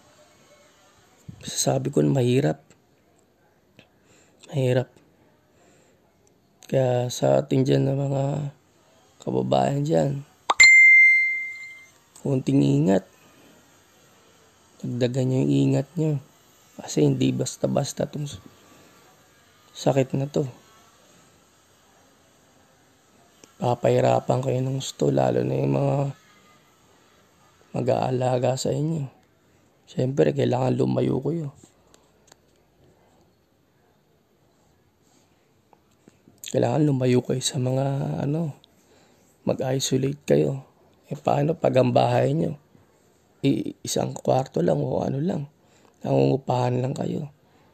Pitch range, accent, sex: 95-145 Hz, native, male